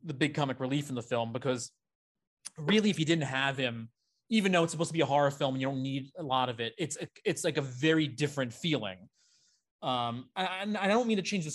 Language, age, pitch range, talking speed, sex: English, 30-49, 125-150 Hz, 240 wpm, male